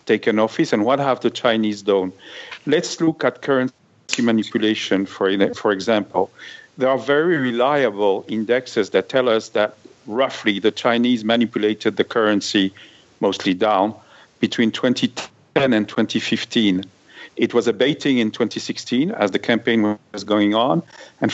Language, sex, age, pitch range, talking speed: English, male, 50-69, 105-140 Hz, 140 wpm